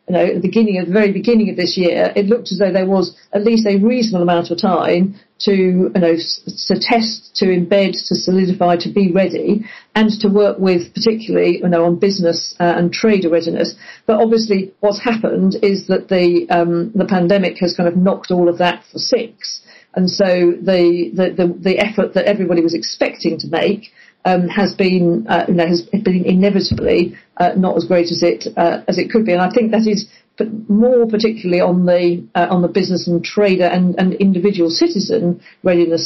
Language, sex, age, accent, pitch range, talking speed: English, female, 50-69, British, 175-205 Hz, 205 wpm